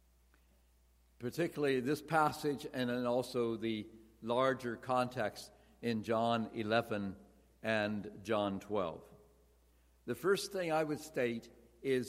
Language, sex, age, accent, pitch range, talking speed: English, male, 60-79, American, 105-155 Hz, 105 wpm